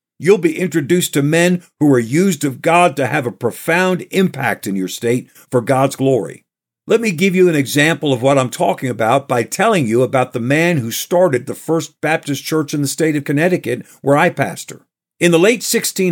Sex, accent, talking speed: male, American, 205 wpm